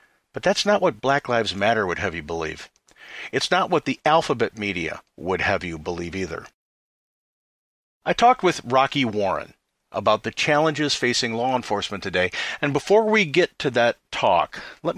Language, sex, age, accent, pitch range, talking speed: English, male, 50-69, American, 110-150 Hz, 170 wpm